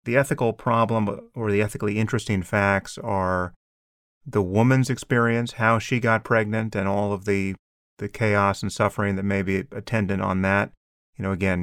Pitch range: 95-110 Hz